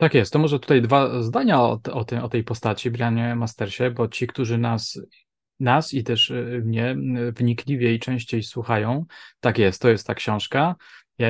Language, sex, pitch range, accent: Polish, male, 115-140 Hz, native